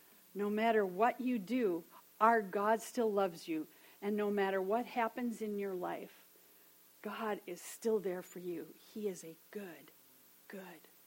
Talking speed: 155 wpm